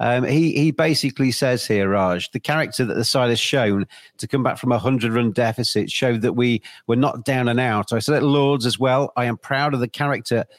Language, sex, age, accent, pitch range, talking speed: English, male, 40-59, British, 110-135 Hz, 230 wpm